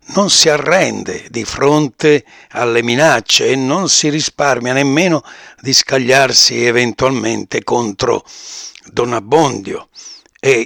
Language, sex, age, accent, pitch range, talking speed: Italian, male, 60-79, native, 120-160 Hz, 105 wpm